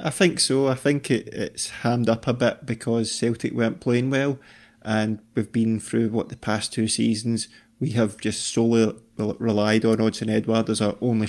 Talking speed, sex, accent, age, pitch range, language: 185 wpm, male, British, 20-39, 110-125 Hz, English